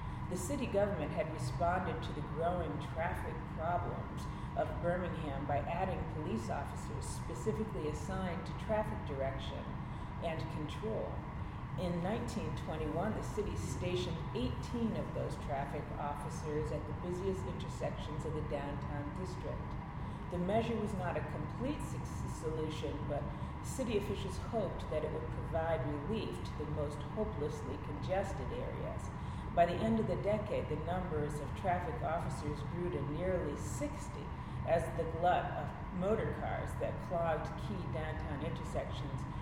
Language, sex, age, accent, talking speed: English, female, 40-59, American, 135 wpm